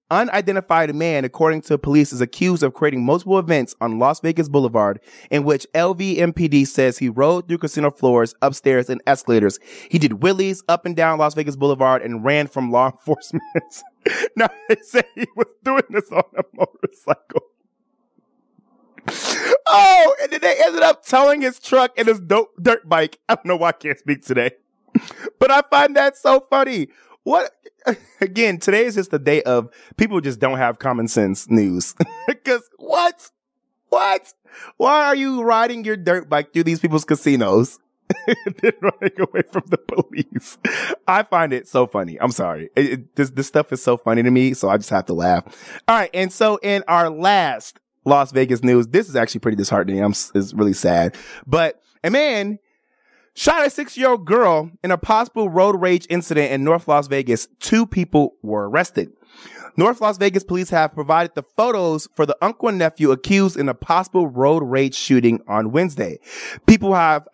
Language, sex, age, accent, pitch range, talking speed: English, male, 20-39, American, 135-220 Hz, 180 wpm